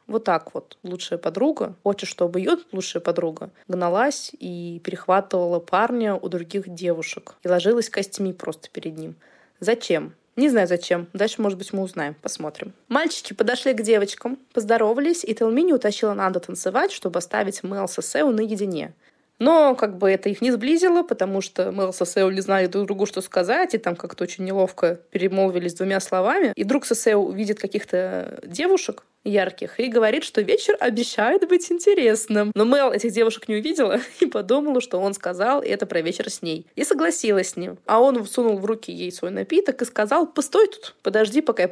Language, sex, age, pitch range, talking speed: Russian, female, 20-39, 185-255 Hz, 175 wpm